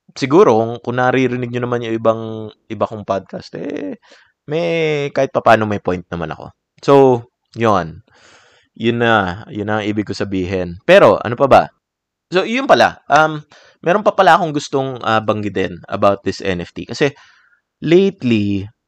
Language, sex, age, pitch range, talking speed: Filipino, male, 20-39, 110-145 Hz, 155 wpm